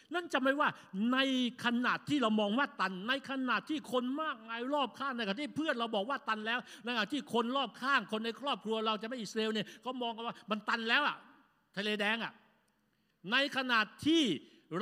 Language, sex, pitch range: Thai, male, 185-260 Hz